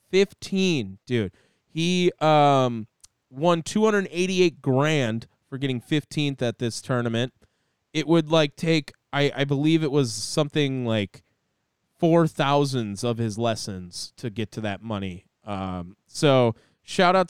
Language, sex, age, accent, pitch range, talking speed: English, male, 20-39, American, 125-165 Hz, 130 wpm